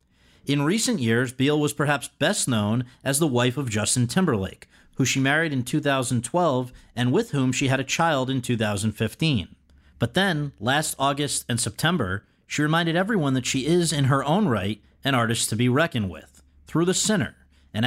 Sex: male